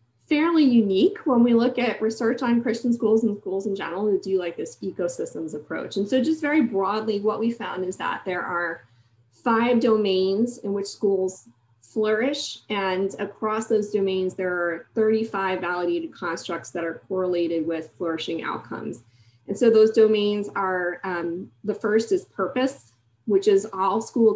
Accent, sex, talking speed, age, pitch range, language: American, female, 165 wpm, 30-49, 175-220 Hz, English